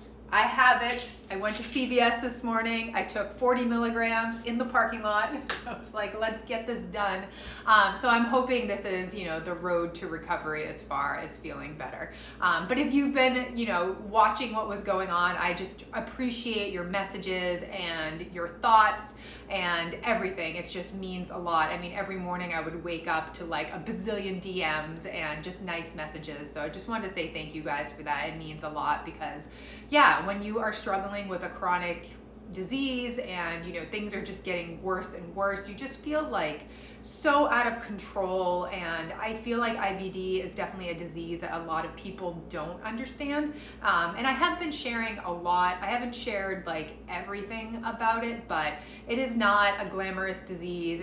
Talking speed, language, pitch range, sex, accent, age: 195 wpm, English, 175-225 Hz, female, American, 30-49